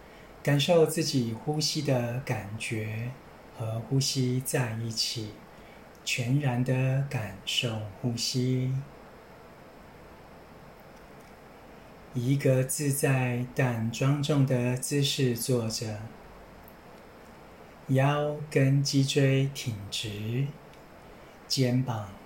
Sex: male